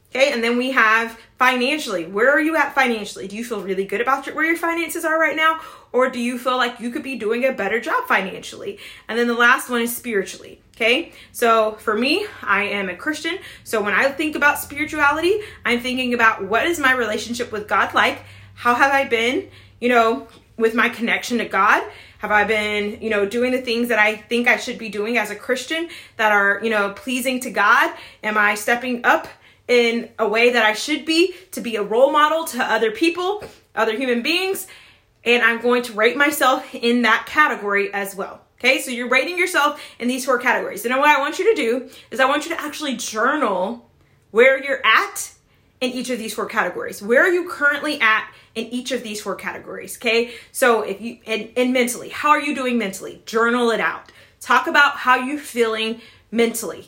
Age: 20-39